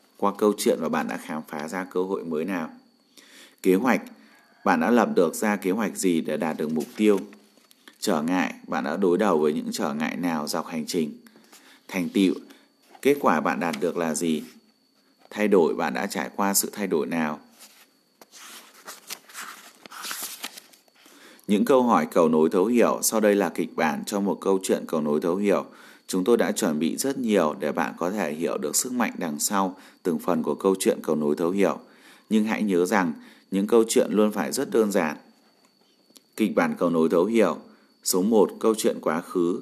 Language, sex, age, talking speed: Vietnamese, male, 20-39, 200 wpm